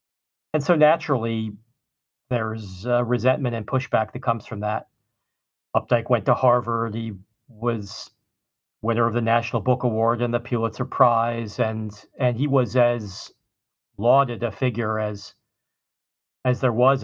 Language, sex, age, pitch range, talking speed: English, male, 40-59, 115-130 Hz, 135 wpm